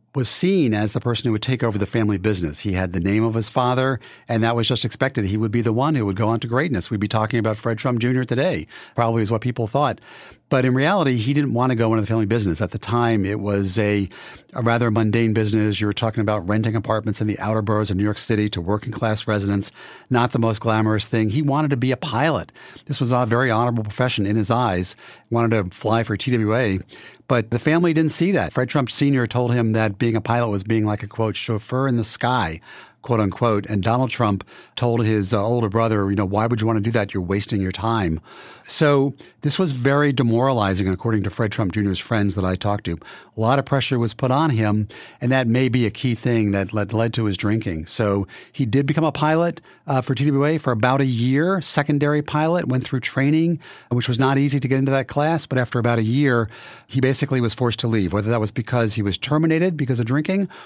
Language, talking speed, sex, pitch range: English, 240 wpm, male, 110-135 Hz